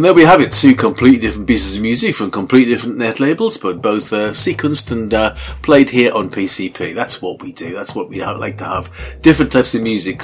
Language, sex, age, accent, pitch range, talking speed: English, male, 40-59, British, 110-145 Hz, 235 wpm